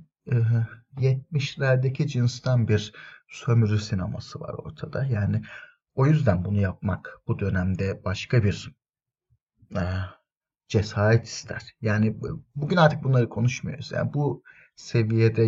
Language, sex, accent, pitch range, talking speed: Turkish, male, native, 110-140 Hz, 100 wpm